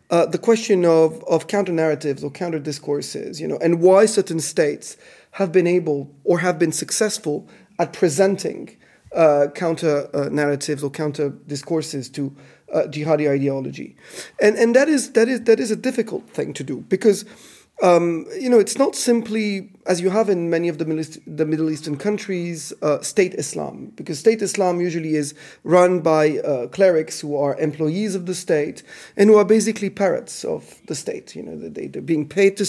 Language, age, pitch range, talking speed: English, 30-49, 160-210 Hz, 185 wpm